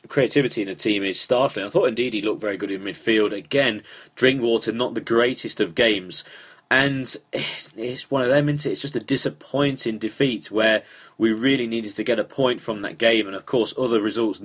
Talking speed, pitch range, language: 210 wpm, 105-135 Hz, English